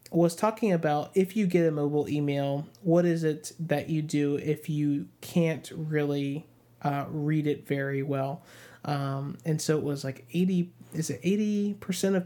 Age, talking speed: 30-49, 170 wpm